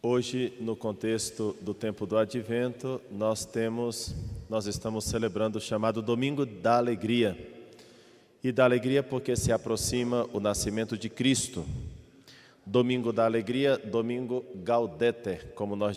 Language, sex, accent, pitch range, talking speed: Portuguese, male, Brazilian, 110-130 Hz, 130 wpm